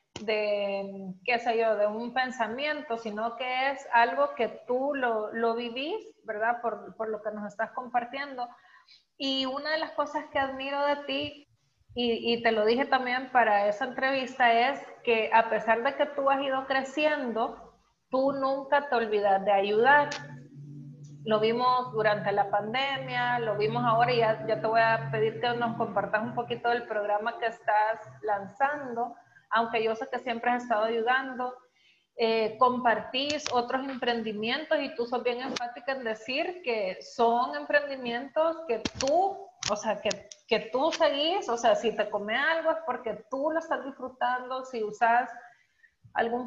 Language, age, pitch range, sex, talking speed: Spanish, 30-49, 220-270 Hz, female, 165 wpm